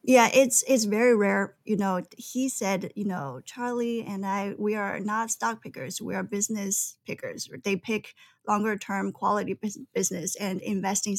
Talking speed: 160 wpm